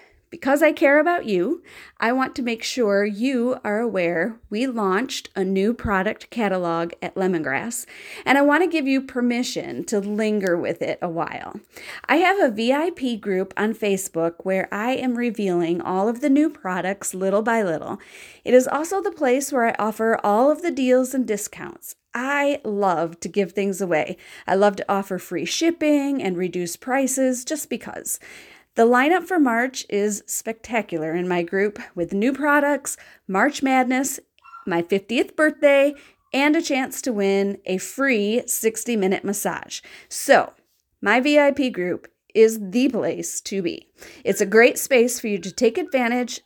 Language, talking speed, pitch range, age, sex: English, 165 wpm, 195-270 Hz, 30-49, female